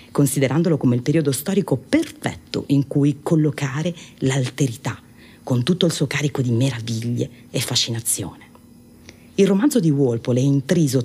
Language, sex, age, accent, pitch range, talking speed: Italian, female, 40-59, native, 115-165 Hz, 135 wpm